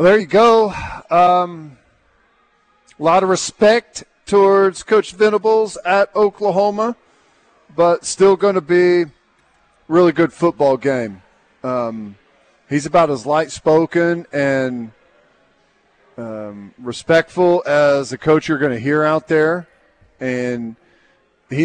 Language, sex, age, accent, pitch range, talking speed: English, male, 40-59, American, 145-175 Hz, 115 wpm